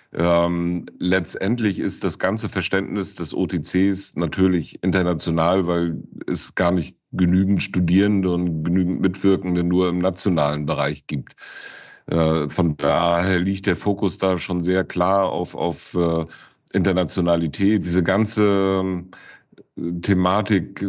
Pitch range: 85-95 Hz